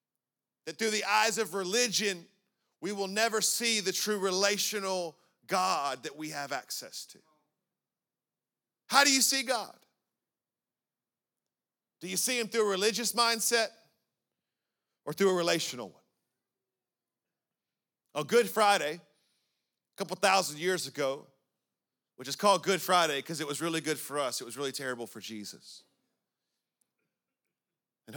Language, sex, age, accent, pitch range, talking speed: English, male, 40-59, American, 120-195 Hz, 140 wpm